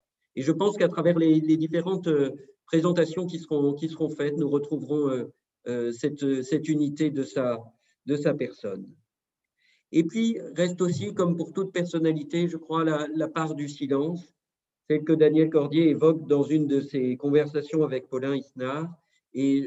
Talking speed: 170 wpm